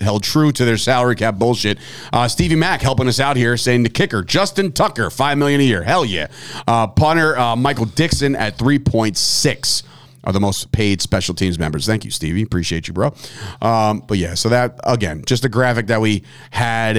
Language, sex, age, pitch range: English, male, 40-59, 110-155 Hz